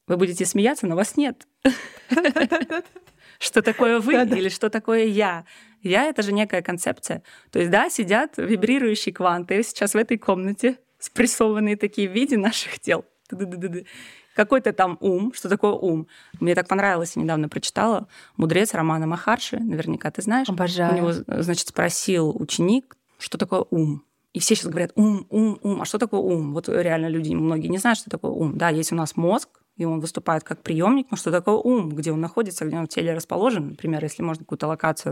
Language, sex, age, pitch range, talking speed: Russian, female, 20-39, 170-230 Hz, 185 wpm